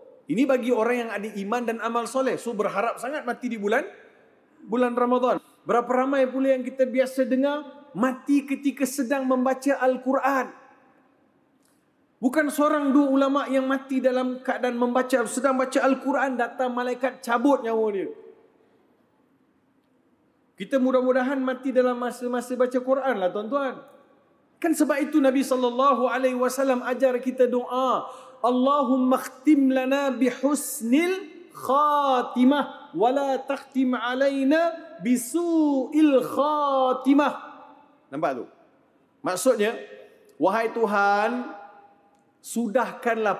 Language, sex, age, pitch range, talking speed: Malay, male, 30-49, 235-280 Hz, 115 wpm